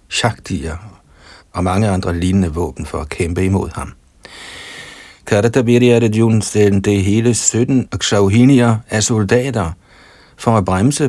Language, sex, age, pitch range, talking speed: Danish, male, 60-79, 85-110 Hz, 120 wpm